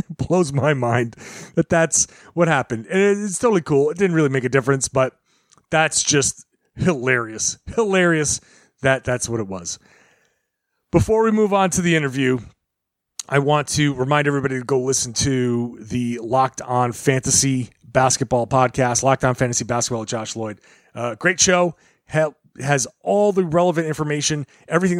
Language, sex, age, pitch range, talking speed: English, male, 30-49, 125-155 Hz, 155 wpm